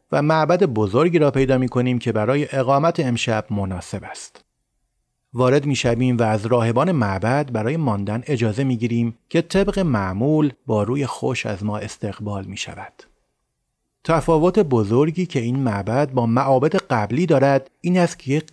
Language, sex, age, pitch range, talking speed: Persian, male, 30-49, 110-150 Hz, 155 wpm